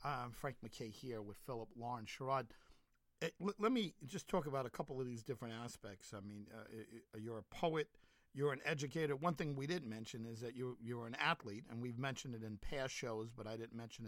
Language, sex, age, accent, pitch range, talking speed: English, male, 50-69, American, 115-150 Hz, 215 wpm